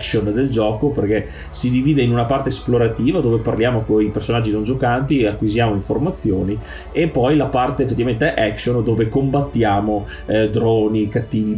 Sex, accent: male, native